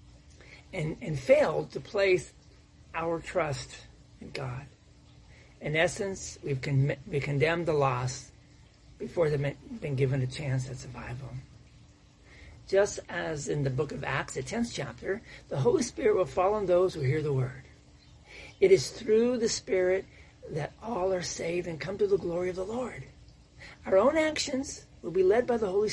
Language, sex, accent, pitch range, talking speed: English, male, American, 135-200 Hz, 160 wpm